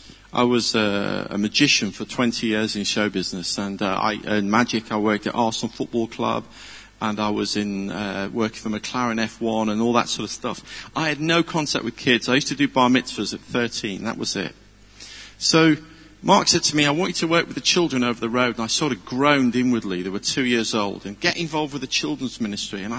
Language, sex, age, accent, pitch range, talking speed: English, male, 40-59, British, 110-170 Hz, 230 wpm